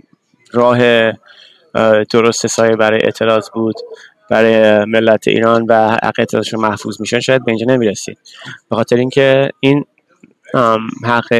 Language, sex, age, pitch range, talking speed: Persian, male, 20-39, 110-125 Hz, 120 wpm